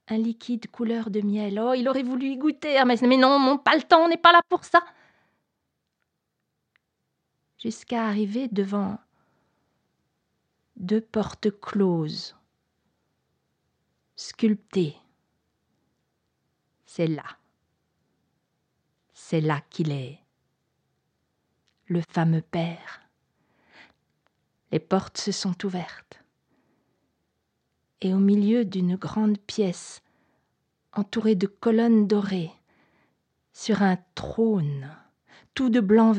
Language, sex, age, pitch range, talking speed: French, female, 40-59, 170-245 Hz, 100 wpm